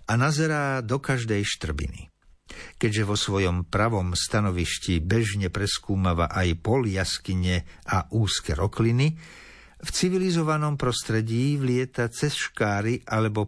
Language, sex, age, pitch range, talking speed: Slovak, male, 50-69, 100-135 Hz, 110 wpm